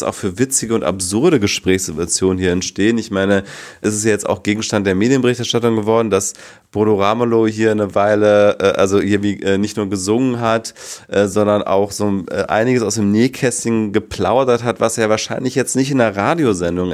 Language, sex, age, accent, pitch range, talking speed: German, male, 30-49, German, 100-125 Hz, 170 wpm